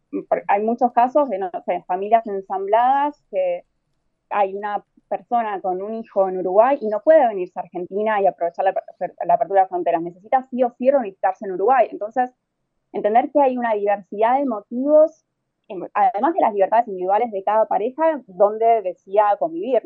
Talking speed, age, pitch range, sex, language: 170 wpm, 20-39, 195-250 Hz, female, English